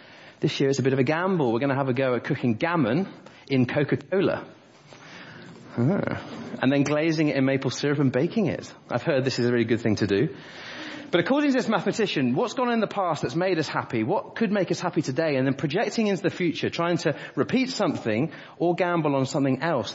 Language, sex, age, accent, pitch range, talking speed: English, male, 30-49, British, 120-165 Hz, 230 wpm